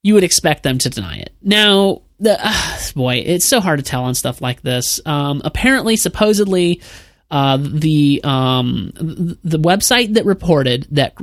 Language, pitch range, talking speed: English, 130-180 Hz, 165 wpm